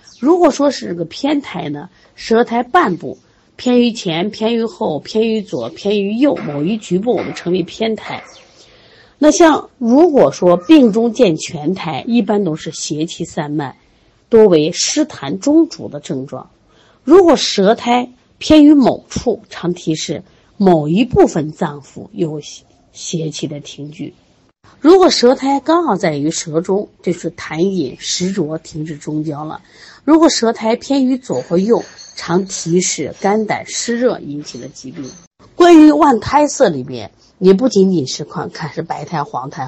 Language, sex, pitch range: Chinese, female, 160-255 Hz